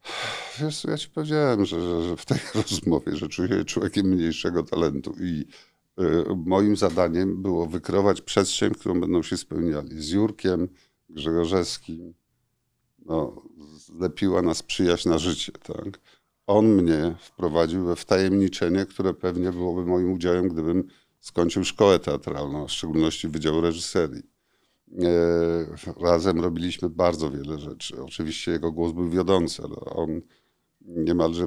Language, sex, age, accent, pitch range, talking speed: Polish, male, 50-69, native, 80-95 Hz, 130 wpm